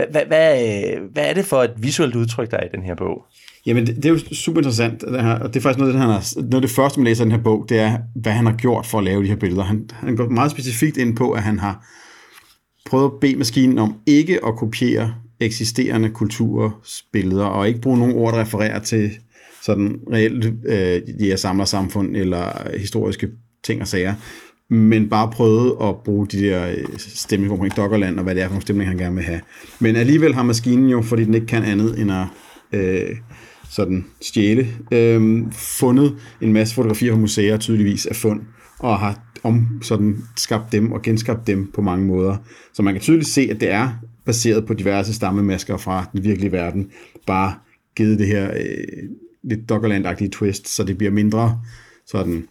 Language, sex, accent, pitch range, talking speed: Danish, male, native, 100-120 Hz, 190 wpm